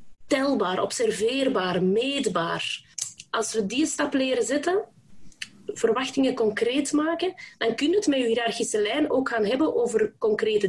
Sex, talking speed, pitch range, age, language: female, 140 wpm, 220-295 Hz, 20-39, Dutch